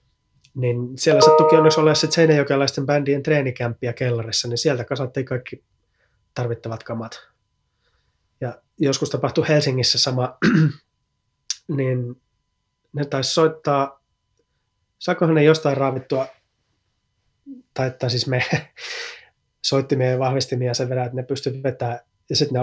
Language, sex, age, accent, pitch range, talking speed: Finnish, male, 20-39, native, 120-145 Hz, 110 wpm